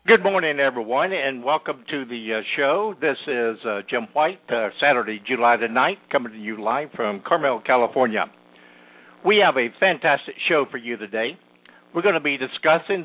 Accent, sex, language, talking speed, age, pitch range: American, male, English, 175 wpm, 60-79, 110-155 Hz